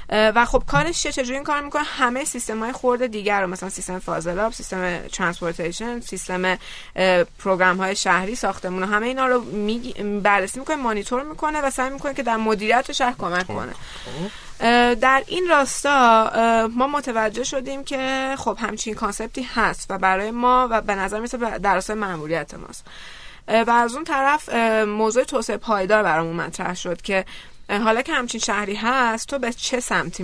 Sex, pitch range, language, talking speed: female, 190-245 Hz, Persian, 165 wpm